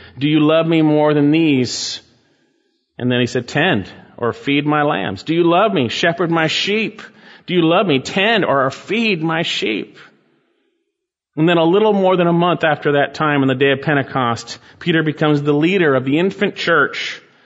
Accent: American